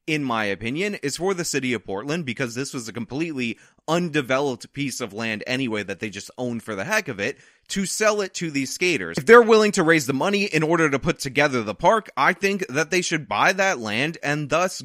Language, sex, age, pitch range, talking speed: English, male, 20-39, 115-160 Hz, 235 wpm